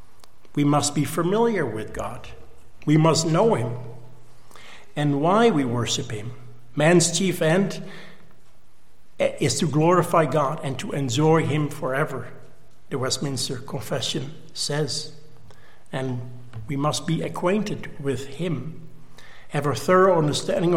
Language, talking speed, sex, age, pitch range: English, 120 wpm, male, 60-79, 130-160 Hz